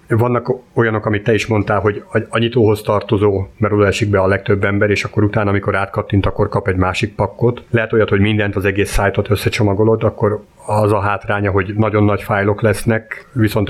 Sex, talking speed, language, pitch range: male, 195 wpm, Hungarian, 100-120 Hz